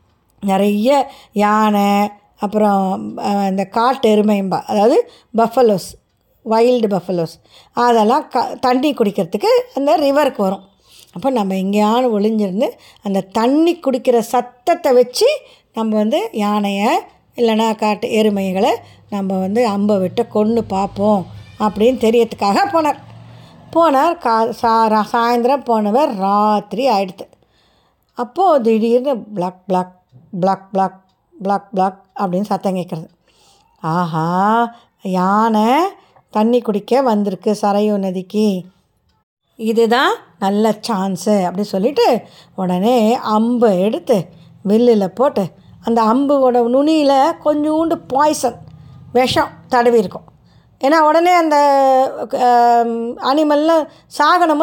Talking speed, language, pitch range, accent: 95 wpm, Tamil, 195-255 Hz, native